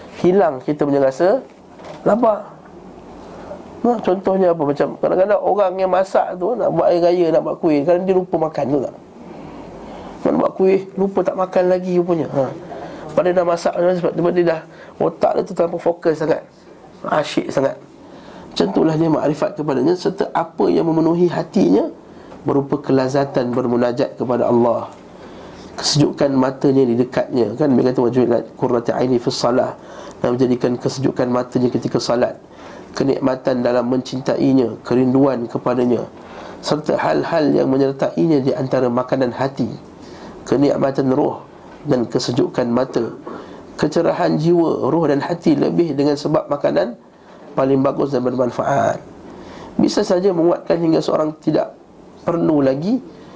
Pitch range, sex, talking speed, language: 130-175 Hz, male, 135 wpm, Malay